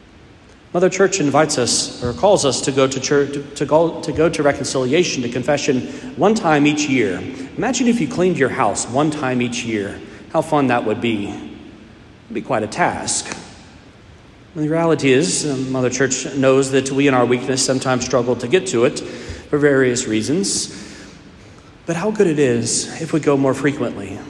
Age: 40-59